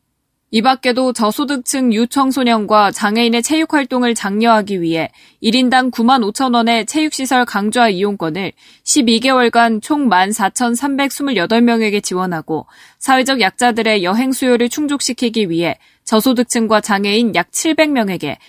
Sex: female